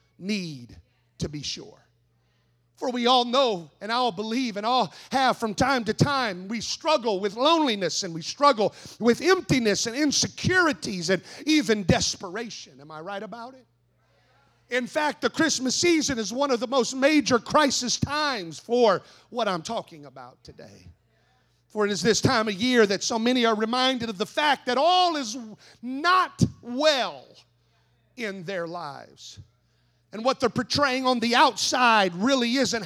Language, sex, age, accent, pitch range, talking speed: English, male, 40-59, American, 170-270 Hz, 160 wpm